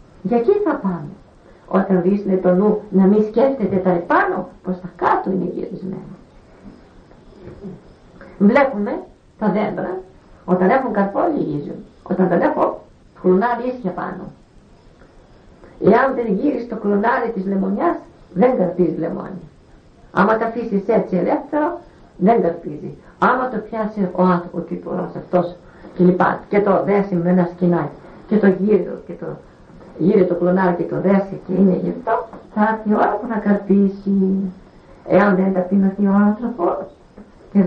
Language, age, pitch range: English, 50-69, 180-220 Hz